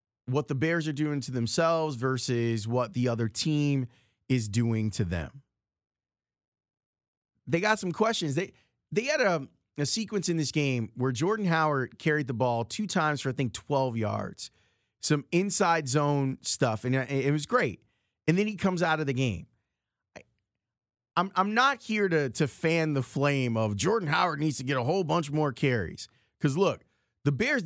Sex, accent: male, American